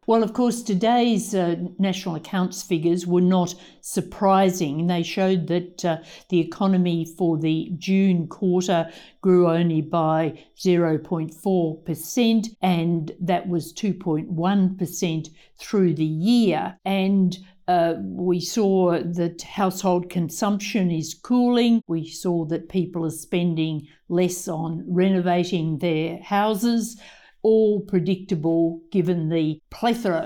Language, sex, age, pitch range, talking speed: English, female, 60-79, 170-200 Hz, 115 wpm